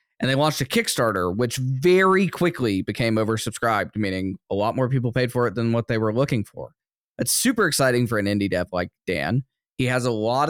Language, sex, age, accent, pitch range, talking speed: English, male, 10-29, American, 100-125 Hz, 210 wpm